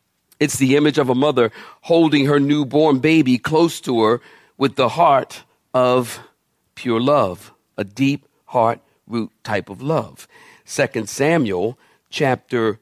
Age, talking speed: 50-69, 135 wpm